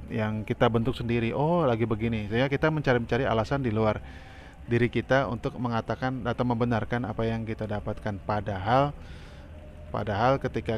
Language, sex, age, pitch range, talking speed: Indonesian, male, 20-39, 105-125 Hz, 150 wpm